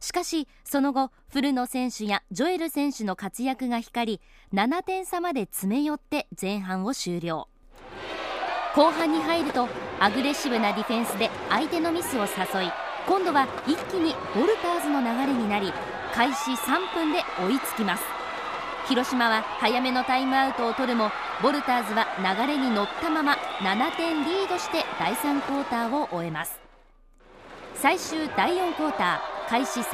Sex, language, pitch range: female, English, 220-310 Hz